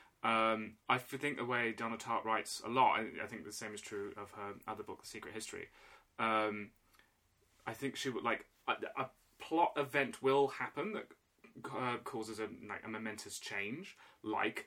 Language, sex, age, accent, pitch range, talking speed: English, male, 20-39, British, 110-130 Hz, 180 wpm